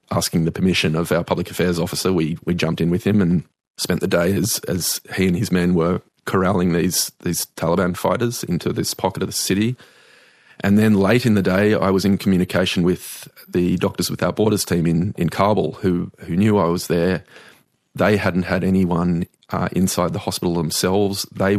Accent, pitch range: Australian, 90-100 Hz